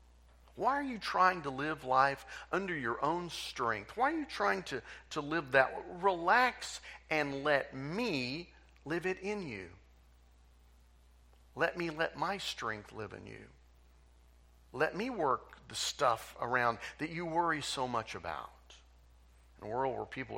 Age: 50-69